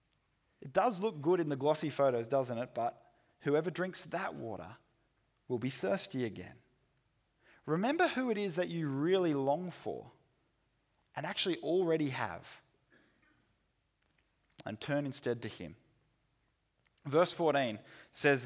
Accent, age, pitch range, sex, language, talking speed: Australian, 20-39, 120-160 Hz, male, English, 130 wpm